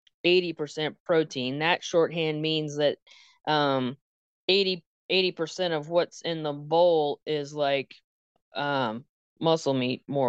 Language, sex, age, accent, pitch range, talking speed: English, female, 20-39, American, 145-175 Hz, 110 wpm